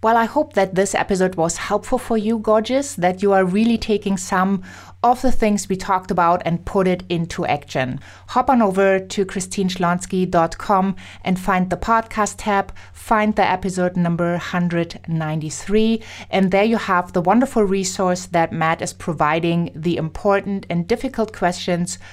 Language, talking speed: English, 160 wpm